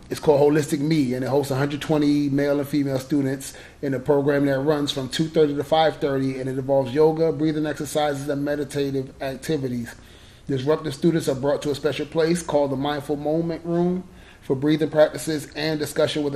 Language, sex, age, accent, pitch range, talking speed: English, male, 30-49, American, 130-150 Hz, 180 wpm